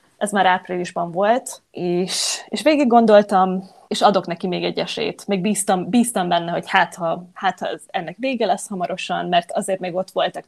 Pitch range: 180-215 Hz